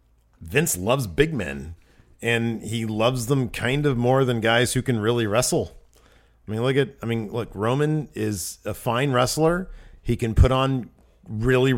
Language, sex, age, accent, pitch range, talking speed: English, male, 40-59, American, 105-130 Hz, 175 wpm